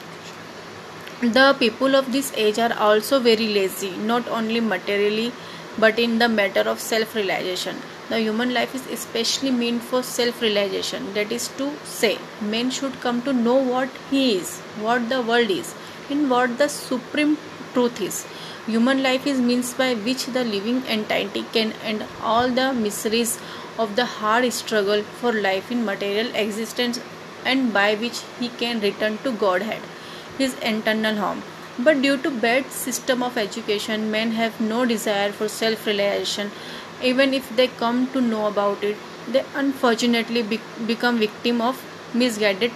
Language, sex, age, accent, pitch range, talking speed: Hindi, female, 30-49, native, 215-255 Hz, 160 wpm